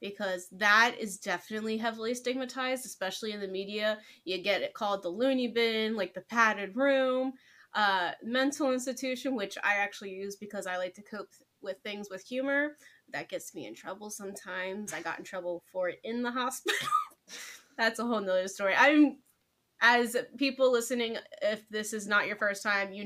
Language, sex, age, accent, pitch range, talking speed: English, female, 20-39, American, 195-250 Hz, 180 wpm